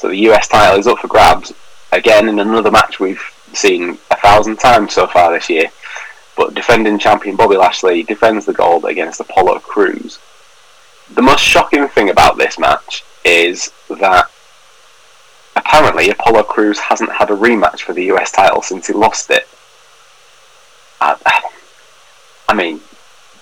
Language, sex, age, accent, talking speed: English, male, 30-49, British, 150 wpm